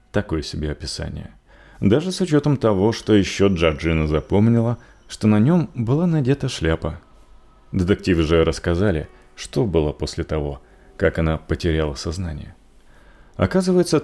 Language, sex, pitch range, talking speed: Russian, male, 80-115 Hz, 125 wpm